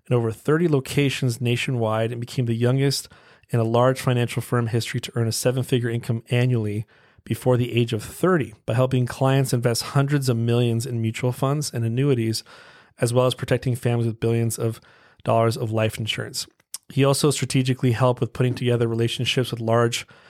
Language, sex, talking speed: English, male, 175 wpm